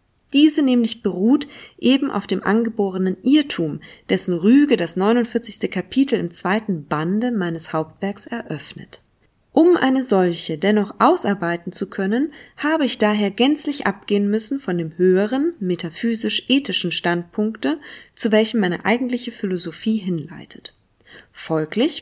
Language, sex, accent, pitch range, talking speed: German, female, German, 180-250 Hz, 120 wpm